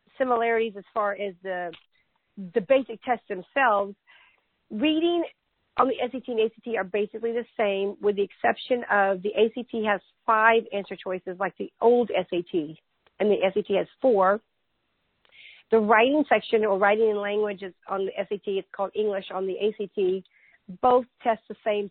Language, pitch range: English, 195-230 Hz